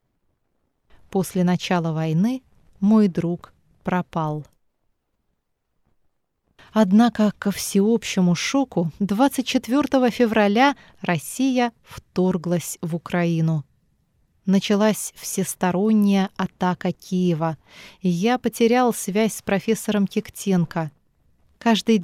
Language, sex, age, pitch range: Chinese, female, 20-39, 180-225 Hz